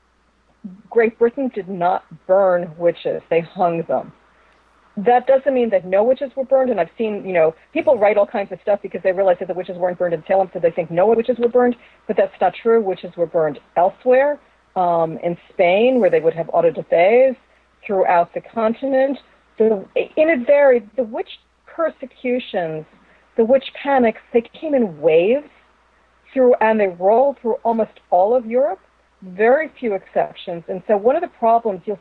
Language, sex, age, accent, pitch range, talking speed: English, female, 40-59, American, 190-260 Hz, 185 wpm